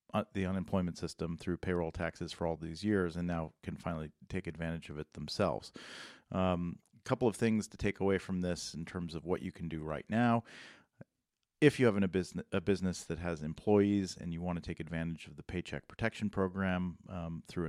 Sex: male